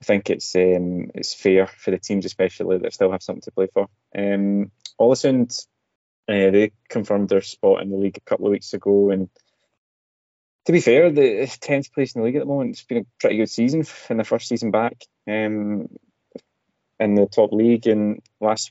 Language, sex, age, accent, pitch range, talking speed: English, male, 20-39, British, 95-110 Hz, 200 wpm